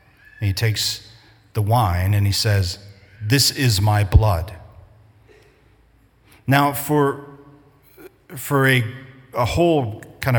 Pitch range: 105-130 Hz